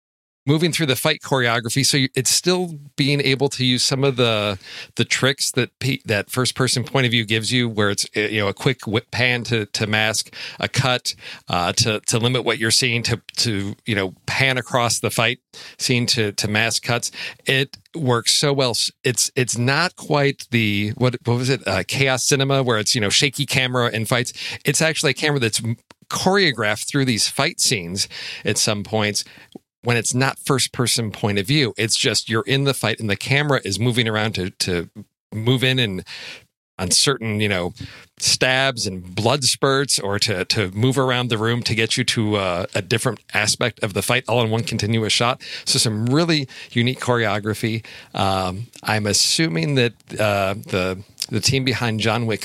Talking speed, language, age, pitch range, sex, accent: 190 wpm, English, 40-59, 110-130 Hz, male, American